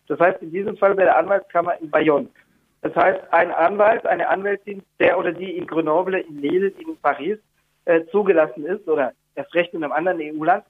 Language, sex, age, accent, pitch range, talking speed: German, male, 50-69, German, 175-215 Hz, 195 wpm